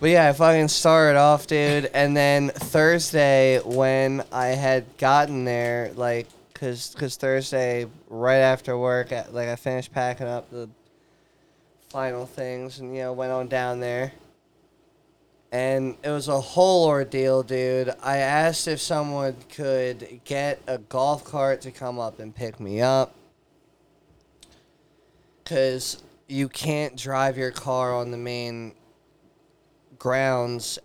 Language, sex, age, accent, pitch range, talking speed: English, male, 20-39, American, 120-145 Hz, 135 wpm